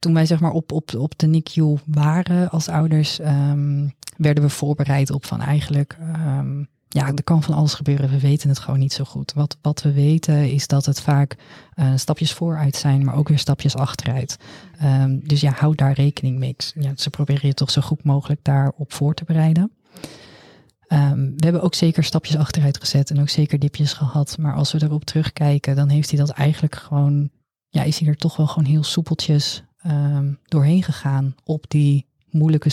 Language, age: Dutch, 20-39